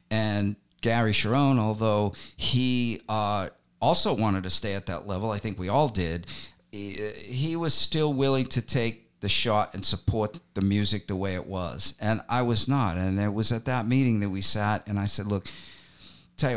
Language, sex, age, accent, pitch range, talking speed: English, male, 50-69, American, 95-125 Hz, 190 wpm